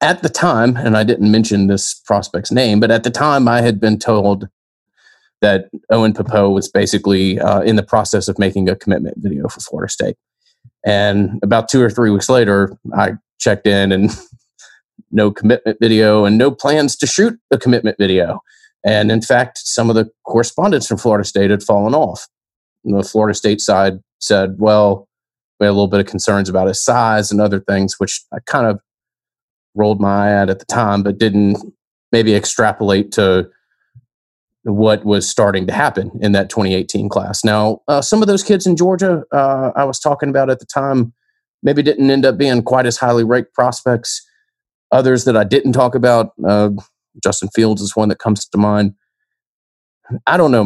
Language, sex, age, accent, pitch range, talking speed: English, male, 30-49, American, 100-120 Hz, 185 wpm